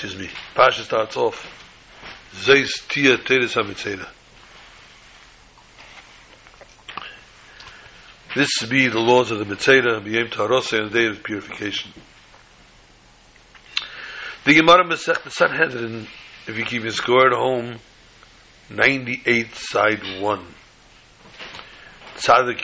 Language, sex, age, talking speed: English, male, 60-79, 75 wpm